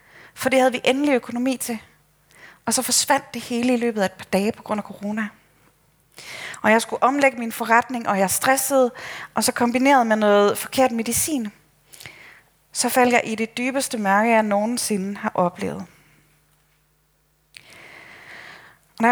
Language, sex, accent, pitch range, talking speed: Danish, female, native, 170-235 Hz, 155 wpm